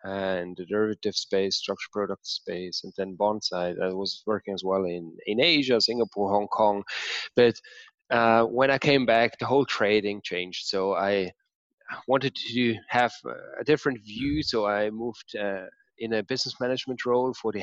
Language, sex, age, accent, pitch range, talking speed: English, male, 20-39, German, 100-115 Hz, 170 wpm